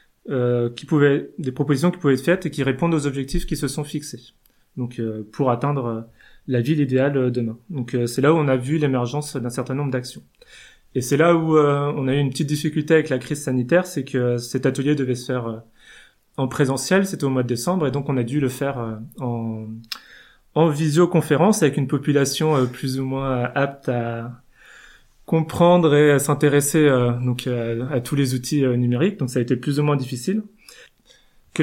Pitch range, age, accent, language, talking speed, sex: 130-155 Hz, 20-39, French, French, 215 wpm, male